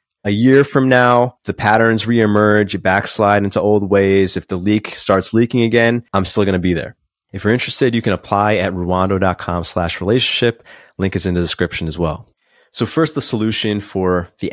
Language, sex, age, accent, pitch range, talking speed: English, male, 30-49, American, 95-120 Hz, 195 wpm